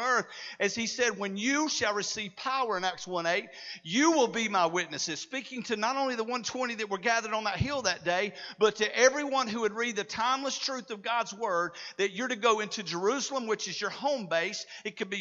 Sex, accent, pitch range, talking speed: male, American, 195-250 Hz, 225 wpm